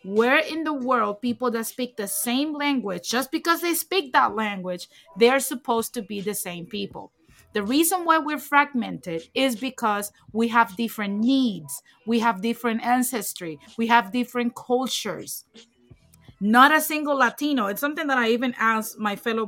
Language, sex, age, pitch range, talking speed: English, female, 30-49, 205-265 Hz, 165 wpm